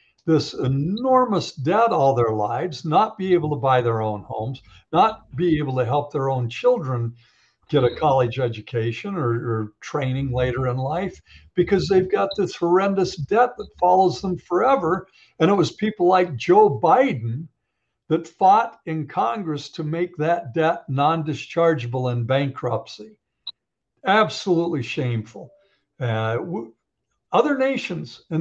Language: English